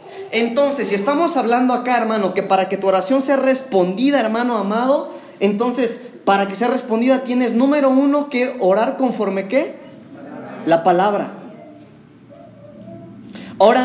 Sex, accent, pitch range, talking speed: male, Mexican, 210-280 Hz, 130 wpm